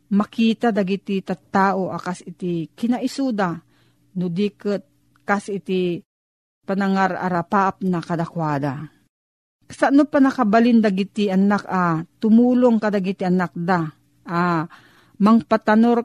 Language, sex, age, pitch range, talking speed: Filipino, female, 40-59, 180-235 Hz, 90 wpm